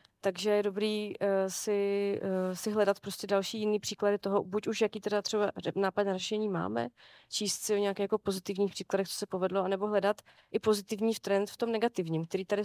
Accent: native